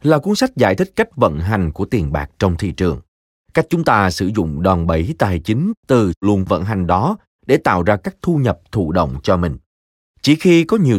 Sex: male